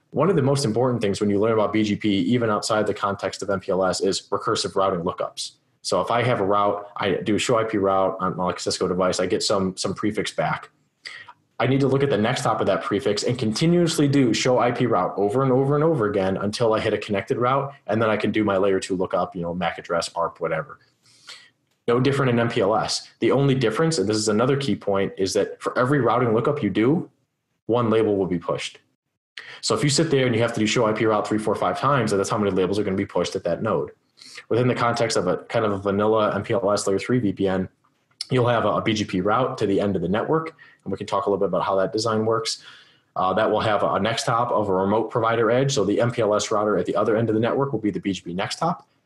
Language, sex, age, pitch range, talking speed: English, male, 20-39, 100-125 Hz, 250 wpm